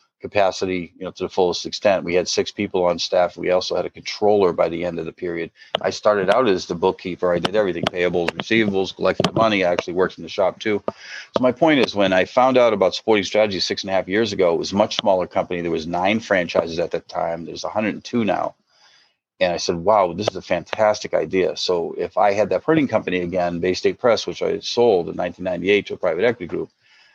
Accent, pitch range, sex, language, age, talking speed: American, 90-115 Hz, male, English, 50-69, 240 wpm